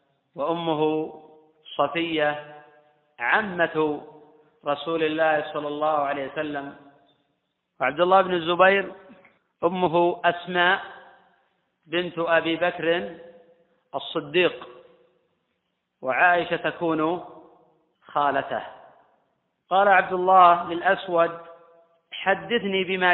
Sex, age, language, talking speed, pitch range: male, 40-59, Arabic, 75 wpm, 155-180 Hz